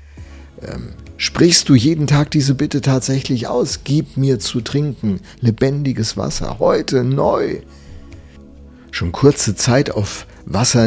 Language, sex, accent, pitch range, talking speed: German, male, German, 100-140 Hz, 115 wpm